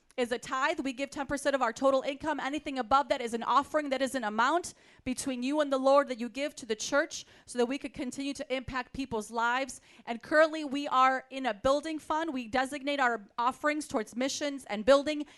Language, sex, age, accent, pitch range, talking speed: English, female, 30-49, American, 245-295 Hz, 220 wpm